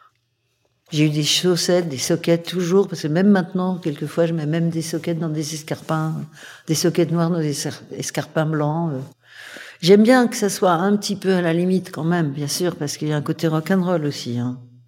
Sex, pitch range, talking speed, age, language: female, 140-175 Hz, 215 wpm, 60-79, French